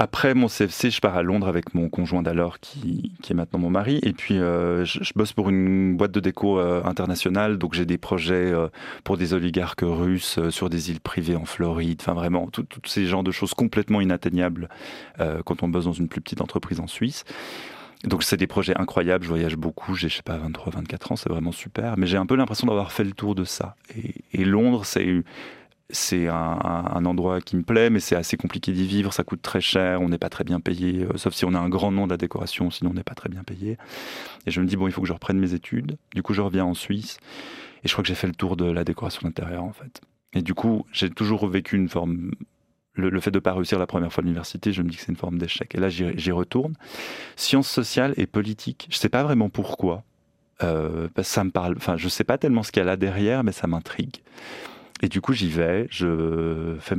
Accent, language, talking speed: French, French, 250 wpm